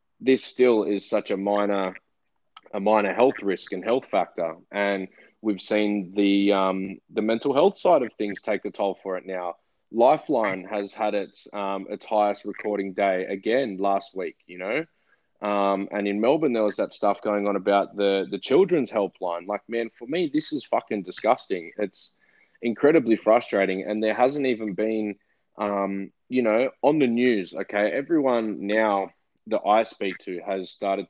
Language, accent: English, Australian